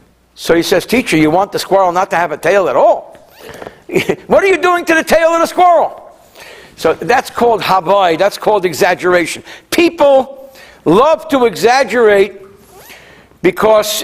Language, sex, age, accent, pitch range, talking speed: English, male, 60-79, American, 170-230 Hz, 160 wpm